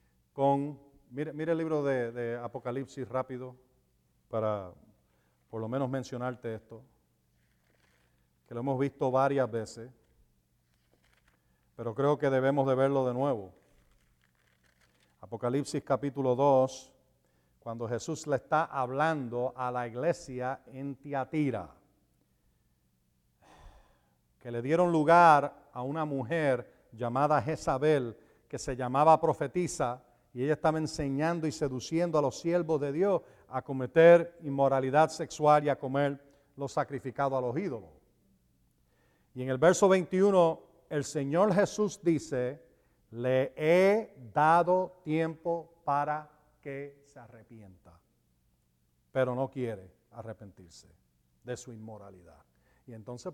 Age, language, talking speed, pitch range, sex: 50-69, Spanish, 115 wpm, 110-150 Hz, male